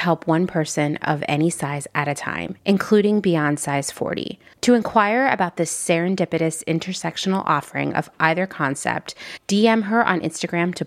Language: English